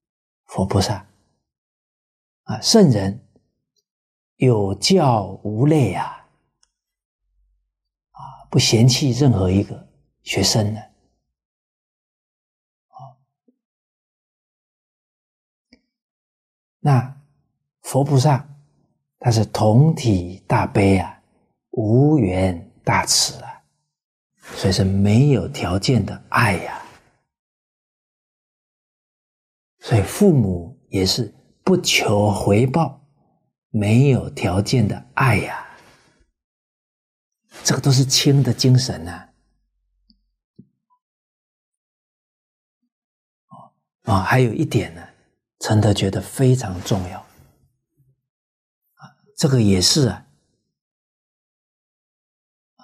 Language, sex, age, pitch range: Chinese, male, 50-69, 100-145 Hz